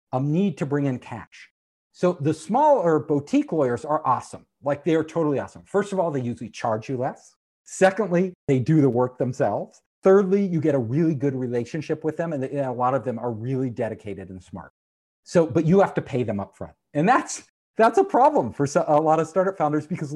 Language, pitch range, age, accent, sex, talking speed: English, 130-195 Hz, 40-59, American, male, 215 wpm